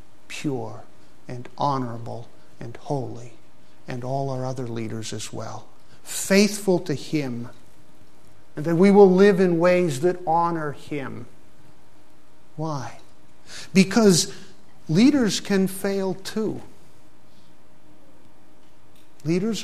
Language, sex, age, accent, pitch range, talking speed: English, male, 50-69, American, 135-190 Hz, 100 wpm